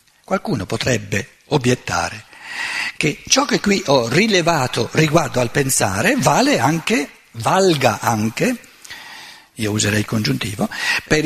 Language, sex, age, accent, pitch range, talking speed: Italian, male, 50-69, native, 120-185 Hz, 110 wpm